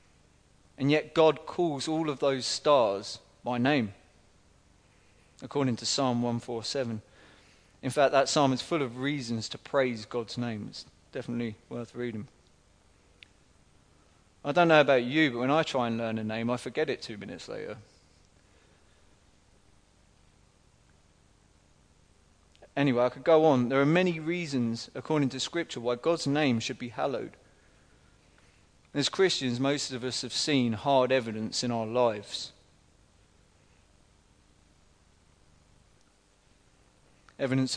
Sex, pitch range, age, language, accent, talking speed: male, 95-135 Hz, 30-49, English, British, 125 wpm